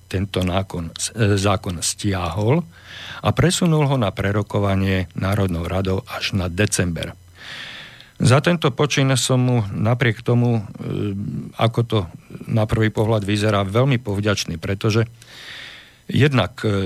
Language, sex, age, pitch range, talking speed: Slovak, male, 50-69, 100-115 Hz, 110 wpm